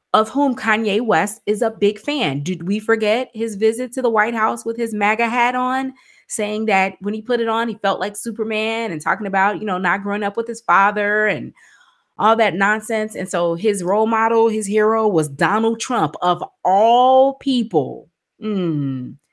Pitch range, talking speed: 180-225 Hz, 190 wpm